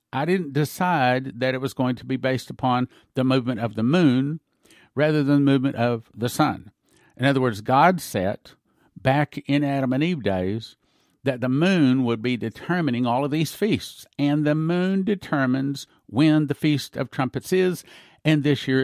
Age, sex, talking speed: 50-69, male, 180 wpm